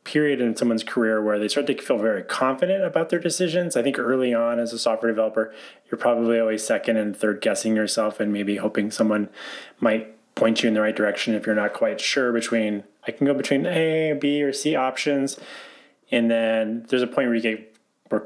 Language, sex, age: English, male, 20-39